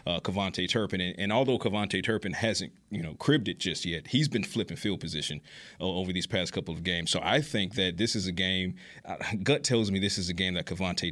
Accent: American